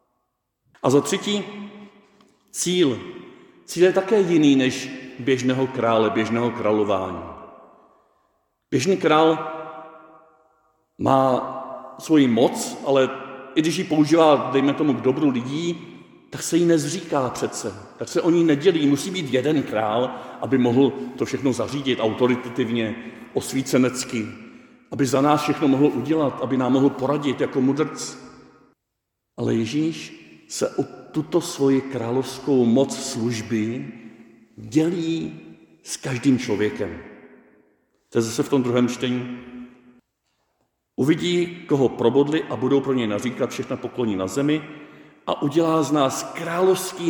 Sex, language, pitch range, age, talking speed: male, Czech, 125-155 Hz, 50-69, 125 wpm